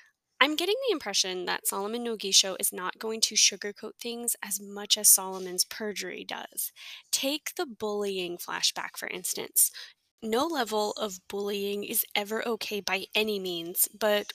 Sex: female